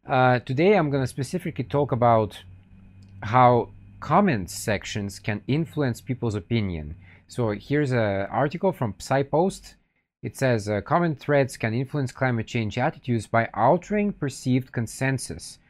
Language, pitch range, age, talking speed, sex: English, 105-145 Hz, 40-59, 135 wpm, male